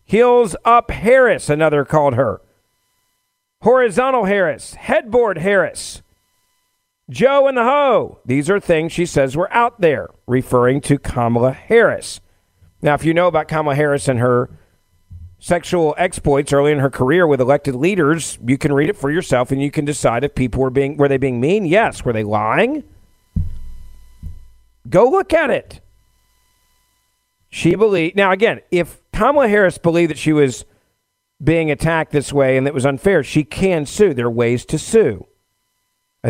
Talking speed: 160 wpm